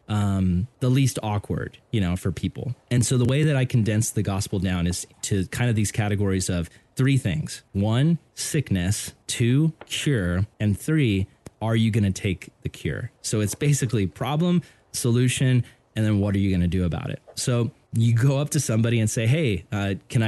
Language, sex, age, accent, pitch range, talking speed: English, male, 20-39, American, 100-130 Hz, 195 wpm